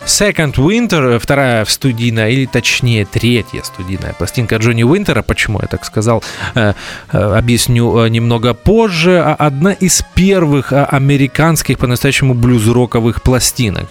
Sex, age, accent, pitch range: male, 20-39, native, 110-140 Hz